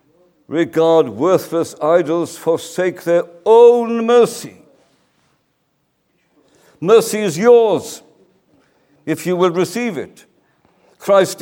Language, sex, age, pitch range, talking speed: English, male, 60-79, 145-180 Hz, 85 wpm